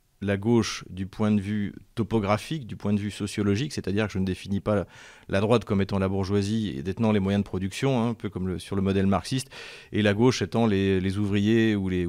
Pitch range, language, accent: 100-115 Hz, French, French